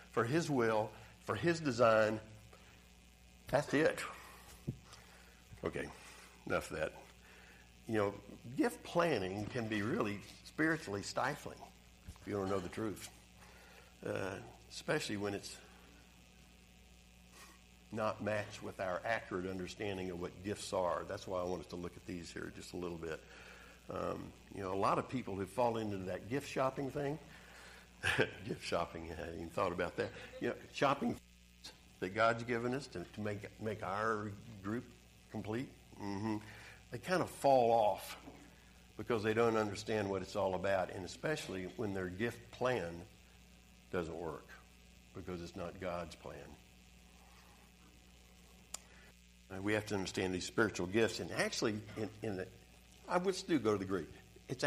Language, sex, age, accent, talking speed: English, male, 60-79, American, 155 wpm